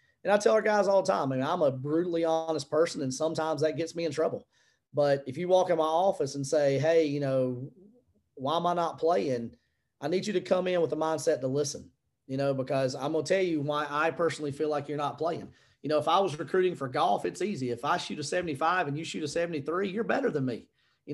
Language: English